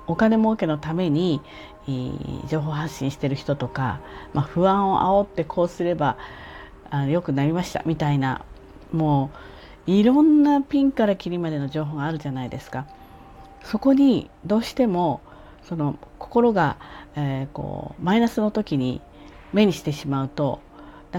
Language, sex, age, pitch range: Japanese, female, 40-59, 140-205 Hz